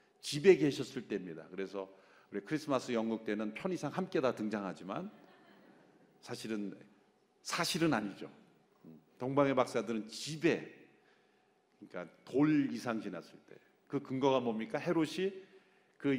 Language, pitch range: Korean, 115-160 Hz